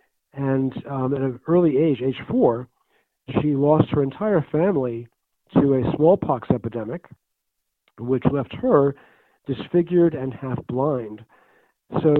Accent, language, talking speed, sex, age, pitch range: American, English, 125 wpm, male, 50-69, 125-150 Hz